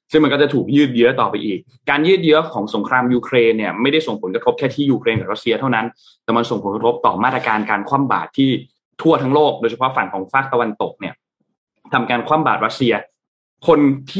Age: 20-39